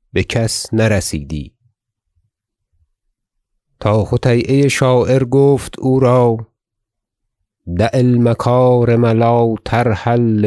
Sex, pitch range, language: male, 105-120 Hz, Persian